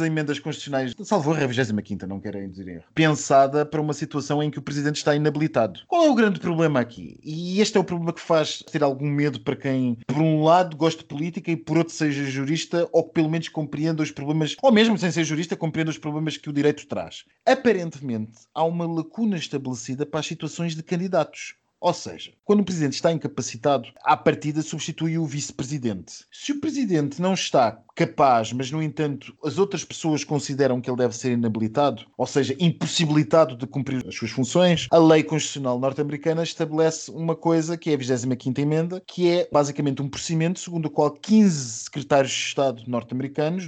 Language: Portuguese